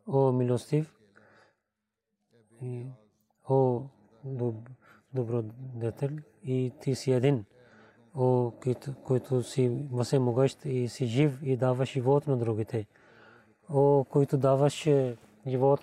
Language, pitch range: Bulgarian, 115-140 Hz